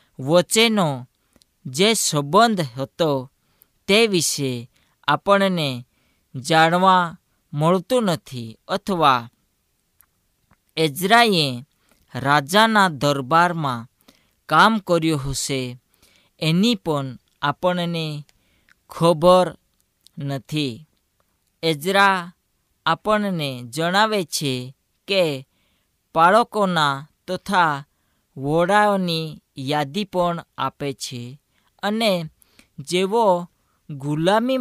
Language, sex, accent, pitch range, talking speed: Hindi, female, native, 135-185 Hz, 40 wpm